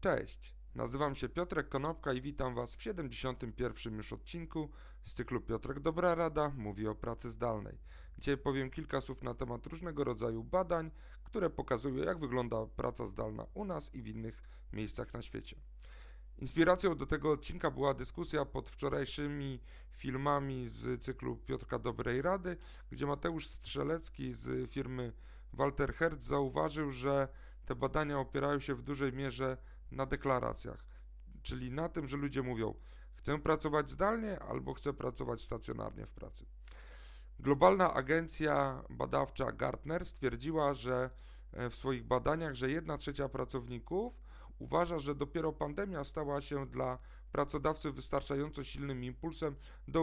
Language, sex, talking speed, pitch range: Polish, male, 140 wpm, 120-150 Hz